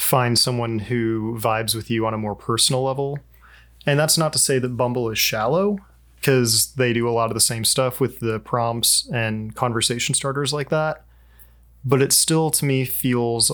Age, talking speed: 30-49, 190 wpm